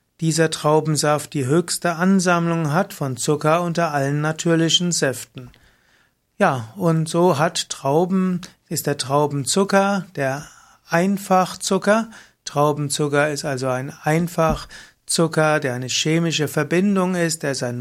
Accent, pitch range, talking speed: German, 140-175 Hz, 120 wpm